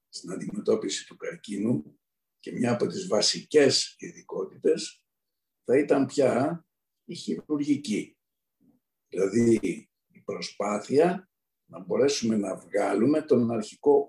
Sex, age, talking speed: male, 60-79, 100 wpm